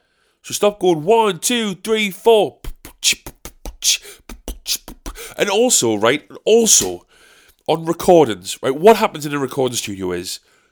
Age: 30-49